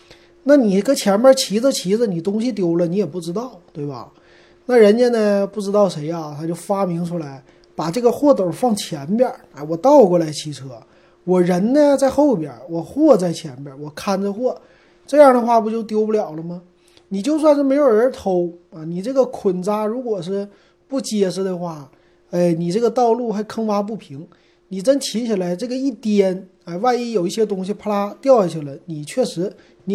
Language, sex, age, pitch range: Chinese, male, 30-49, 170-235 Hz